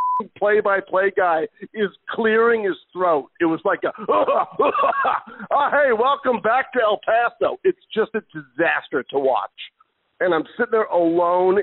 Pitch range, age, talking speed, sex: 185-280 Hz, 50-69, 145 wpm, male